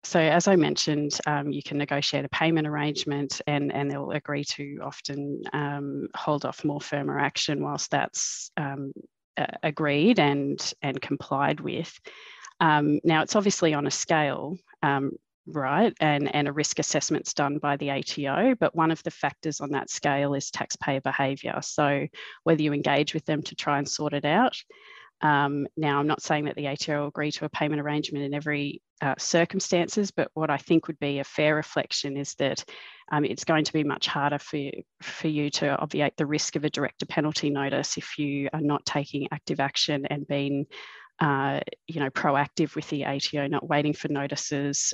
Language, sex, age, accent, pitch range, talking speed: English, female, 30-49, Australian, 145-155 Hz, 190 wpm